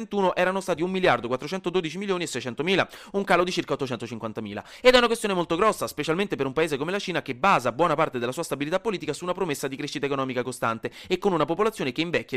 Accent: native